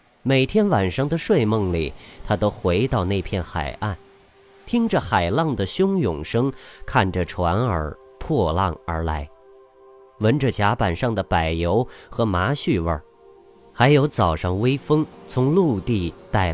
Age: 30-49